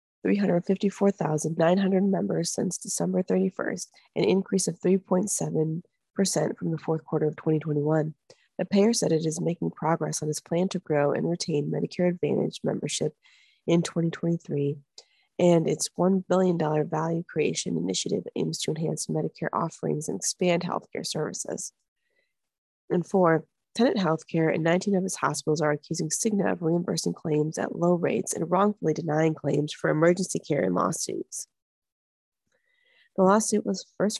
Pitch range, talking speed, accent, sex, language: 155-195 Hz, 140 wpm, American, female, English